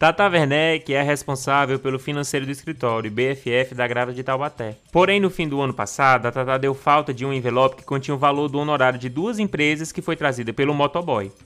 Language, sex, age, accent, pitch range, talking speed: Portuguese, male, 20-39, Brazilian, 130-175 Hz, 210 wpm